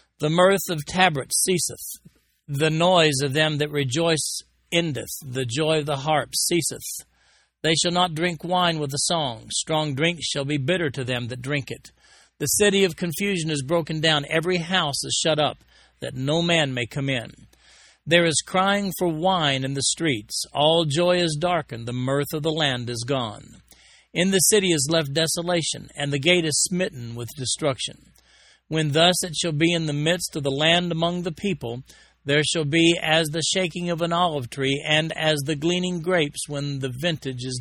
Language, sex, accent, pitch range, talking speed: English, male, American, 140-175 Hz, 190 wpm